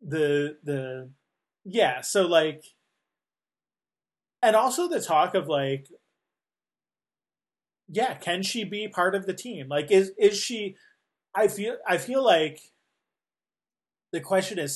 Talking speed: 125 wpm